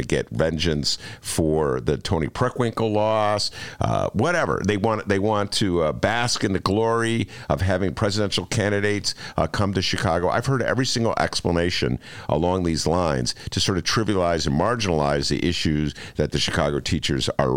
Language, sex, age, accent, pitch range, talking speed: English, male, 50-69, American, 80-115 Hz, 165 wpm